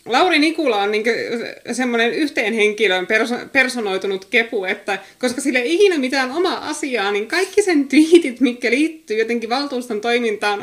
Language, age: Finnish, 20-39